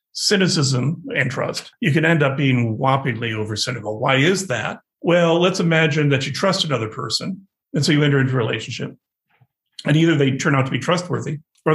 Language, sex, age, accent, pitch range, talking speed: English, male, 50-69, American, 135-160 Hz, 195 wpm